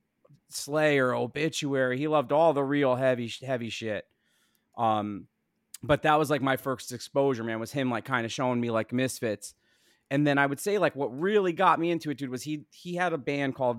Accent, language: American, English